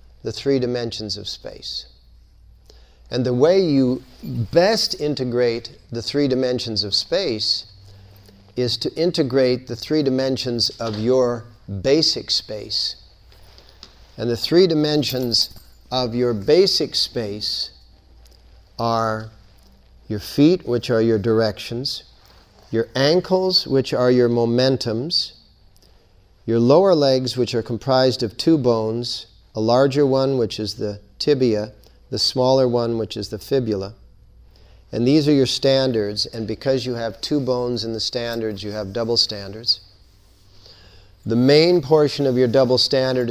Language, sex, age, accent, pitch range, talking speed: English, male, 50-69, American, 105-130 Hz, 130 wpm